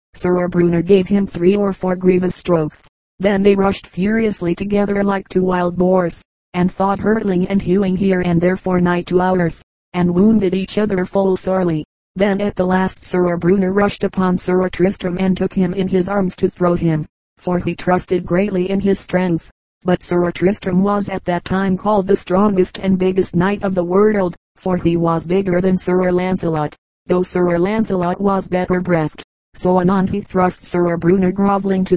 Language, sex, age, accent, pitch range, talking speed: English, female, 30-49, American, 180-195 Hz, 185 wpm